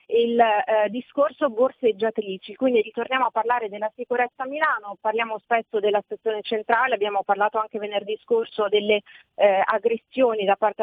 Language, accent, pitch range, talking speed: Italian, native, 210-250 Hz, 150 wpm